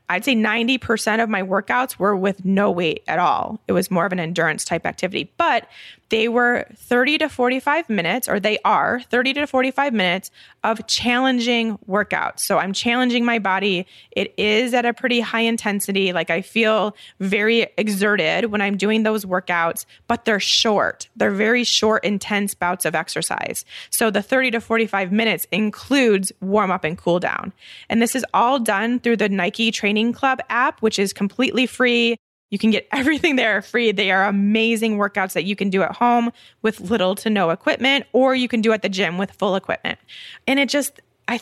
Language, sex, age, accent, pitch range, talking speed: English, female, 20-39, American, 200-240 Hz, 190 wpm